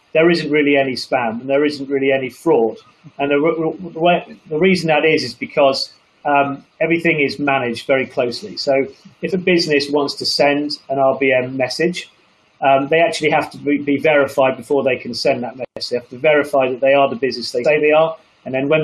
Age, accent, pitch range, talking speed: 30-49, British, 135-155 Hz, 205 wpm